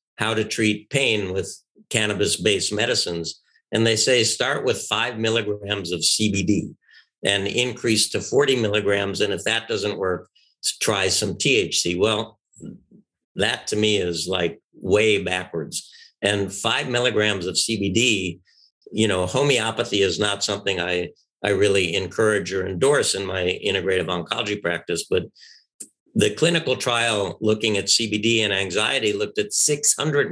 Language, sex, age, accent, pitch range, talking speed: English, male, 60-79, American, 100-115 Hz, 140 wpm